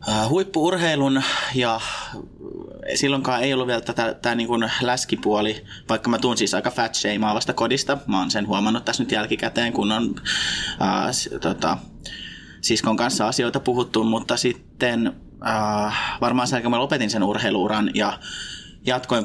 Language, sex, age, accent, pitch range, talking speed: Finnish, male, 20-39, native, 105-125 Hz, 135 wpm